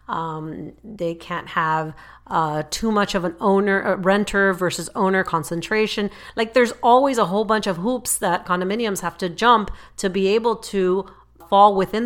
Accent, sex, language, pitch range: American, female, English, 175-210 Hz